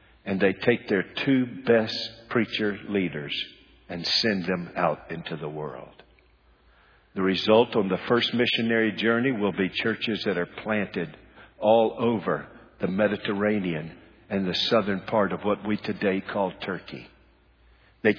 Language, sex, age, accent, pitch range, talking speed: English, male, 50-69, American, 100-125 Hz, 140 wpm